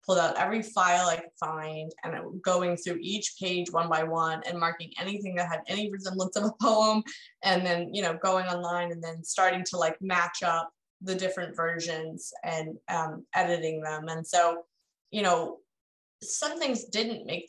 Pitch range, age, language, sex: 165-195 Hz, 20-39, English, female